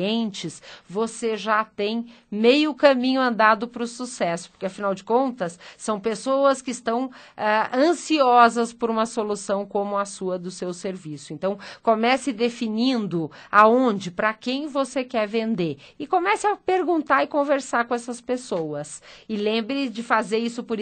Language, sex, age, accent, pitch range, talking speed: Portuguese, female, 40-59, Brazilian, 185-235 Hz, 150 wpm